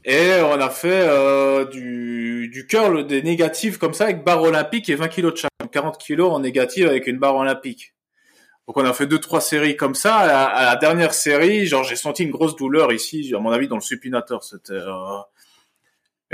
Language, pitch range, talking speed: French, 115-155 Hz, 205 wpm